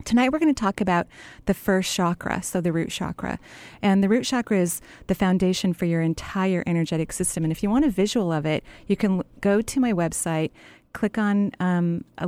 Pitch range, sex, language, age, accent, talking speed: 165-190 Hz, female, English, 30-49, American, 205 wpm